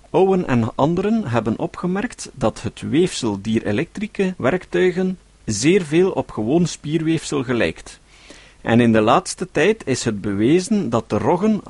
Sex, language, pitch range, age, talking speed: male, Dutch, 110-170 Hz, 50-69, 140 wpm